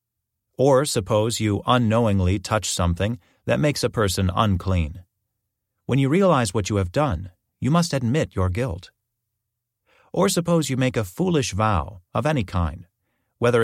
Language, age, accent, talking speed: English, 40-59, American, 150 wpm